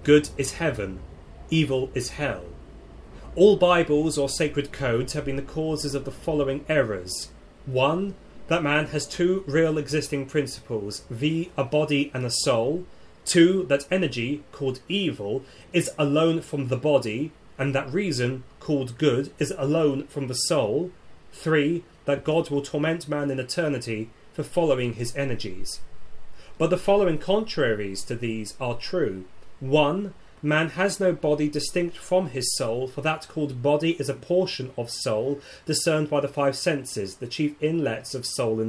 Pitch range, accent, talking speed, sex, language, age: 125-160 Hz, British, 160 wpm, male, English, 30-49